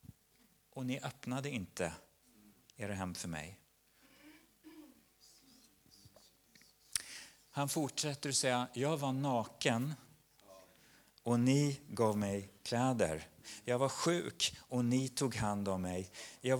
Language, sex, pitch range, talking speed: Swedish, male, 95-140 Hz, 110 wpm